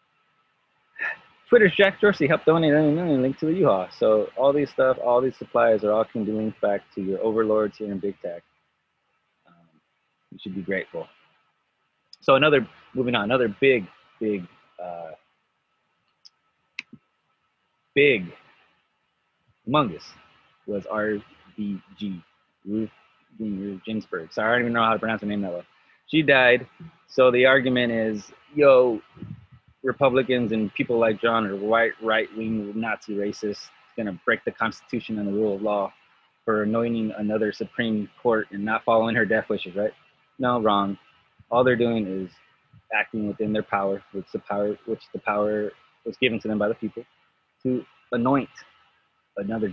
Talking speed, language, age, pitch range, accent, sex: 150 wpm, English, 30-49, 105-125 Hz, American, male